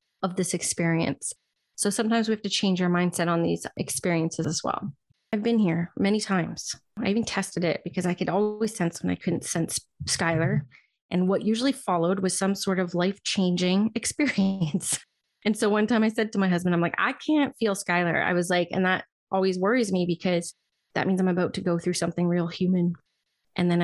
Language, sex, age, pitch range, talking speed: English, female, 20-39, 175-205 Hz, 205 wpm